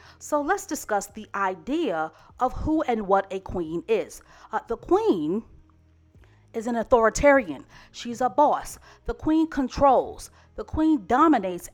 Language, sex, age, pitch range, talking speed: English, female, 40-59, 195-295 Hz, 140 wpm